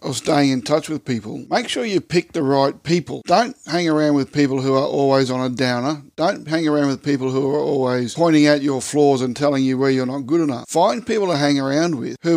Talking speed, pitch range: 245 wpm, 135-155 Hz